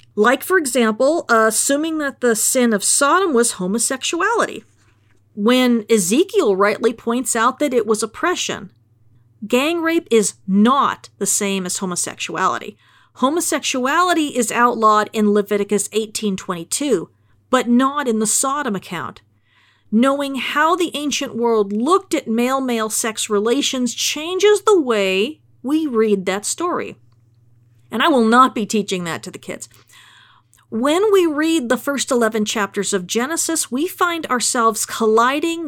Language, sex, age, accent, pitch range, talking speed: English, female, 40-59, American, 205-280 Hz, 135 wpm